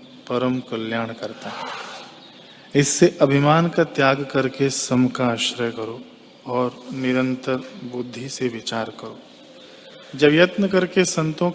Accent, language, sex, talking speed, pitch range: native, Hindi, male, 120 wpm, 125-145 Hz